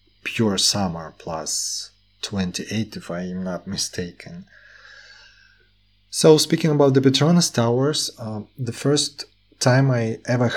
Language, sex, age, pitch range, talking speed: Russian, male, 30-49, 100-125 Hz, 125 wpm